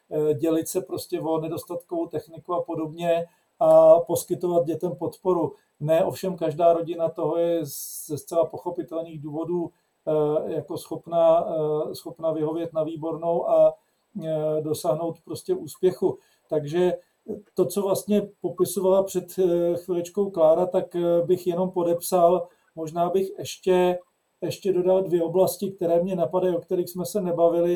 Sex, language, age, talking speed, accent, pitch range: male, Czech, 40-59, 130 wpm, native, 165-185 Hz